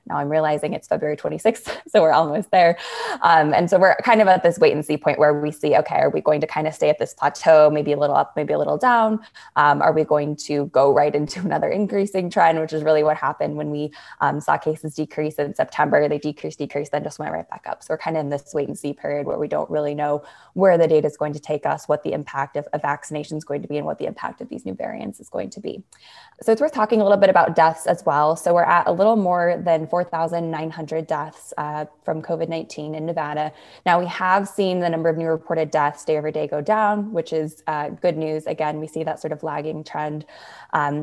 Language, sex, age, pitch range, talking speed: English, female, 20-39, 150-170 Hz, 255 wpm